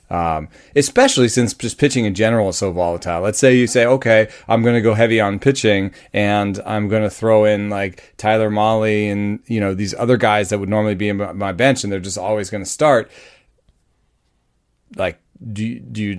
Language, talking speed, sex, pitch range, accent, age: English, 210 wpm, male, 90-110 Hz, American, 30-49